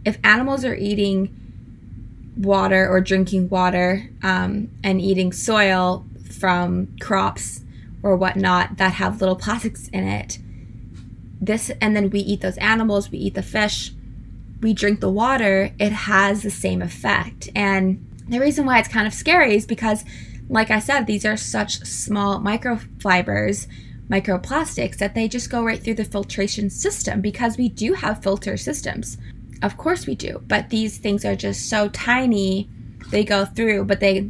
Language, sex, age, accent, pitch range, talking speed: English, female, 20-39, American, 180-215 Hz, 160 wpm